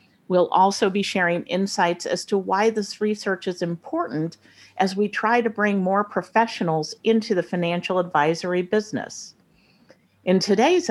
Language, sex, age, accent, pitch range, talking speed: English, female, 50-69, American, 165-220 Hz, 145 wpm